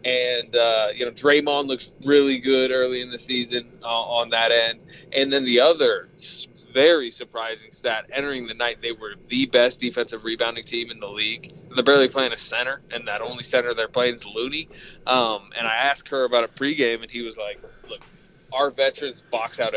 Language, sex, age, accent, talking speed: English, male, 20-39, American, 200 wpm